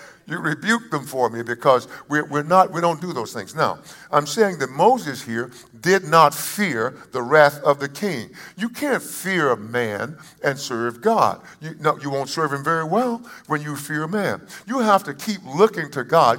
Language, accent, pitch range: English, American, 120-175 Hz